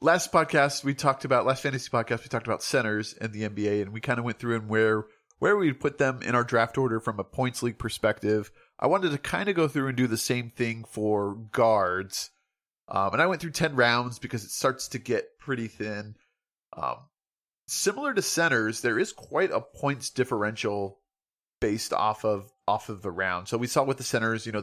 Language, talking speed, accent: English, 215 wpm, American